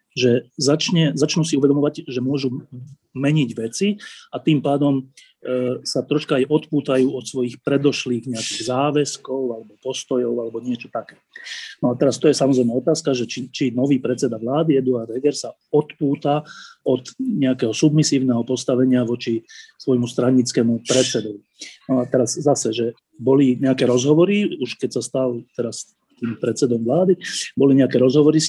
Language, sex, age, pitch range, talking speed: Slovak, male, 30-49, 125-145 Hz, 145 wpm